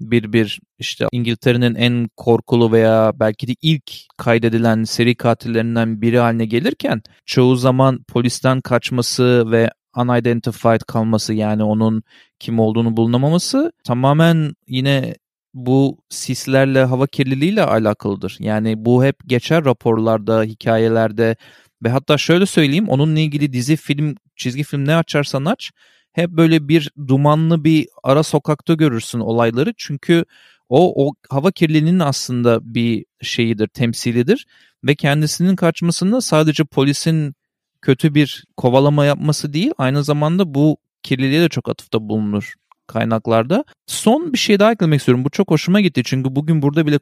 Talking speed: 135 wpm